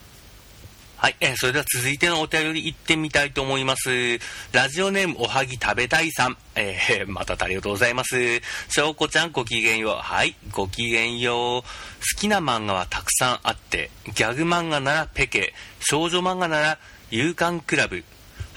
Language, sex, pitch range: Japanese, male, 115-160 Hz